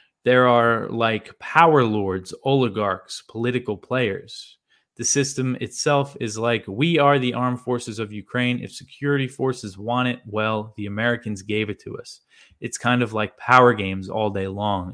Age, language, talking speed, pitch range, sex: 20-39, English, 165 wpm, 105-130 Hz, male